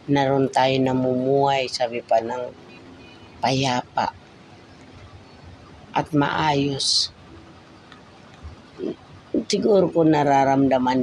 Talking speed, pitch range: 65 wpm, 125-135 Hz